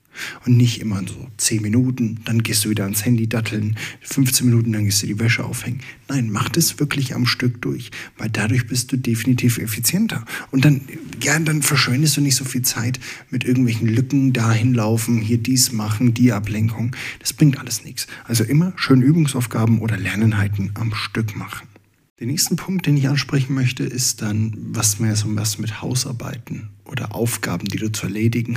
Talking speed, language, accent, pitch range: 185 wpm, German, German, 110-130 Hz